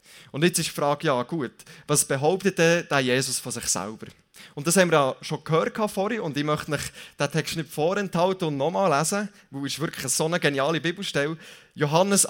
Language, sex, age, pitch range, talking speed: German, male, 20-39, 140-180 Hz, 205 wpm